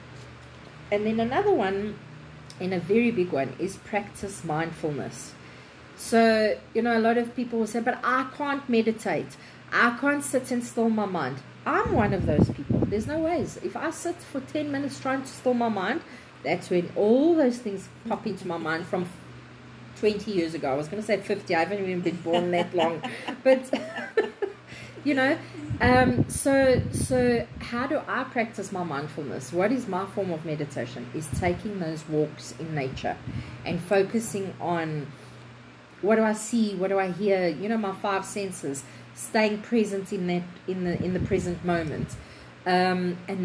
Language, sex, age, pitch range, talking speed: English, female, 40-59, 155-225 Hz, 180 wpm